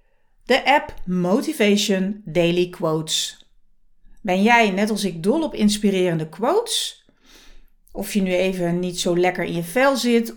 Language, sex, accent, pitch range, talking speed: Dutch, female, Dutch, 180-245 Hz, 145 wpm